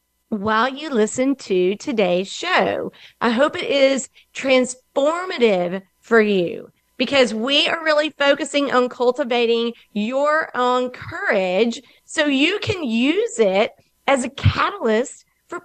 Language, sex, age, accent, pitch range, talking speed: English, female, 40-59, American, 210-275 Hz, 125 wpm